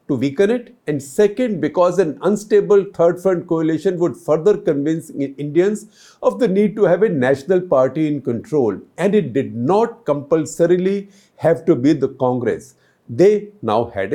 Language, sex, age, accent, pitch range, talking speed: English, male, 50-69, Indian, 140-200 Hz, 155 wpm